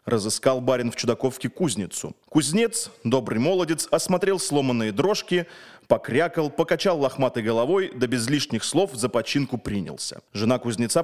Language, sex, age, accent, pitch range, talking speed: Russian, male, 30-49, native, 125-180 Hz, 130 wpm